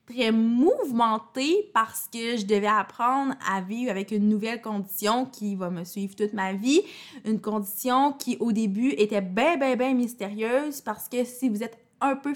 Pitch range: 205-255 Hz